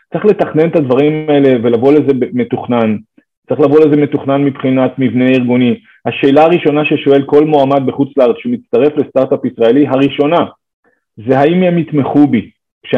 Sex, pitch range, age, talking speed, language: male, 130-155 Hz, 30-49, 150 wpm, English